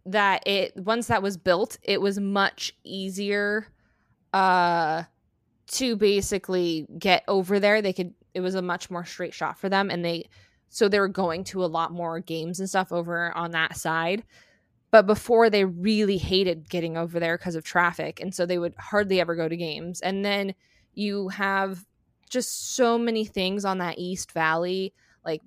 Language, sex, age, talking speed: English, female, 20-39, 180 wpm